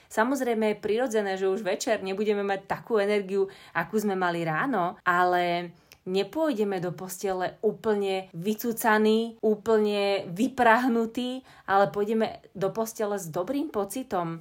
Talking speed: 120 wpm